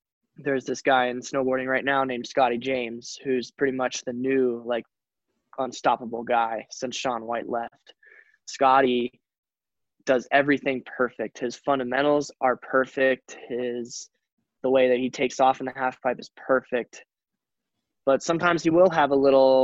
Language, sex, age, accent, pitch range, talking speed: English, male, 10-29, American, 120-135 Hz, 155 wpm